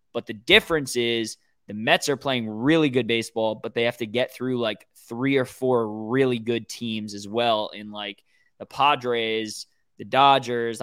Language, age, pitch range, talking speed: English, 20-39, 115-140 Hz, 175 wpm